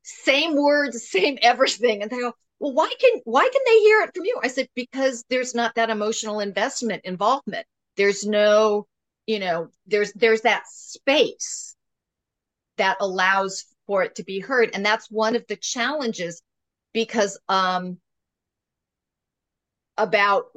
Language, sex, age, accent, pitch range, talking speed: English, female, 50-69, American, 200-255 Hz, 145 wpm